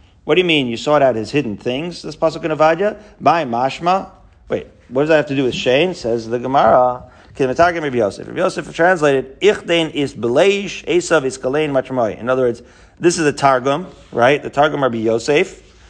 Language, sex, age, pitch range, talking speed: English, male, 40-59, 130-170 Hz, 180 wpm